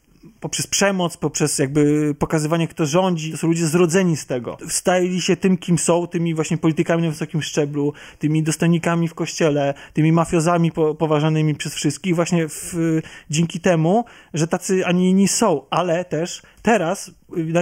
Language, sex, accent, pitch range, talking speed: Polish, male, native, 155-195 Hz, 155 wpm